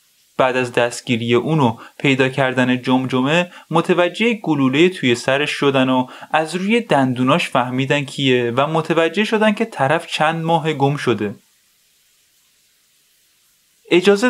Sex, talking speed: male, 120 wpm